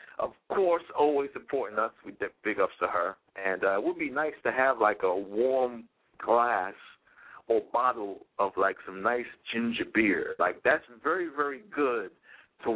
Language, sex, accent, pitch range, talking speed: English, male, American, 105-150 Hz, 175 wpm